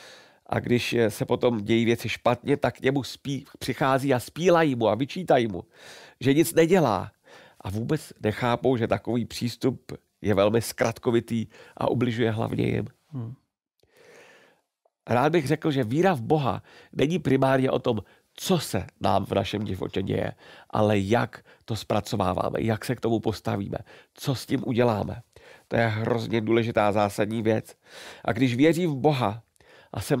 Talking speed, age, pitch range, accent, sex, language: 155 wpm, 50-69, 110-155 Hz, native, male, Czech